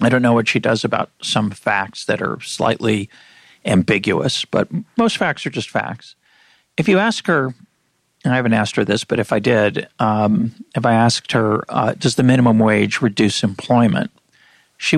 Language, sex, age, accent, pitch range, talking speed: English, male, 50-69, American, 115-160 Hz, 185 wpm